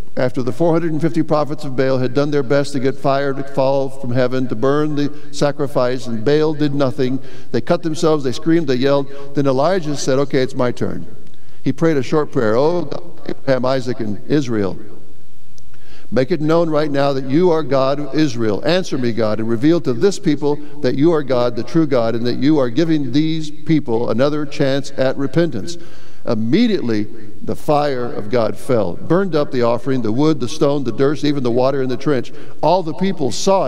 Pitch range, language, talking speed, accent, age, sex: 130-155 Hz, English, 200 wpm, American, 60-79, male